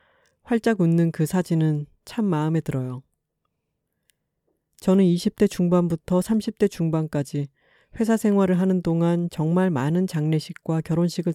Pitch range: 155-190 Hz